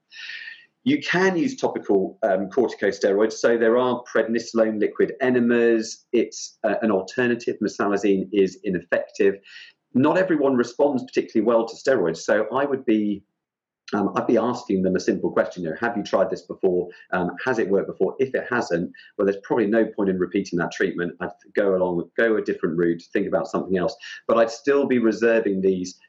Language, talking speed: English, 185 wpm